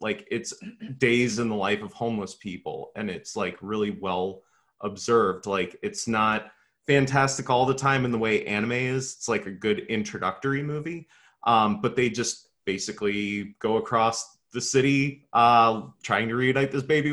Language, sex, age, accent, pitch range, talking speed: English, male, 30-49, American, 95-130 Hz, 170 wpm